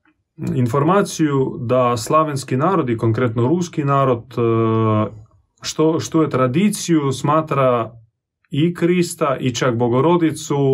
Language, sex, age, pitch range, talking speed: Croatian, male, 30-49, 115-150 Hz, 100 wpm